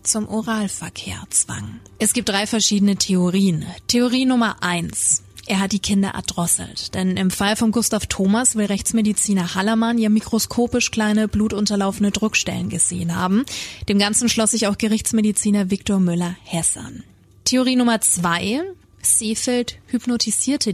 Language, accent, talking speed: German, German, 135 wpm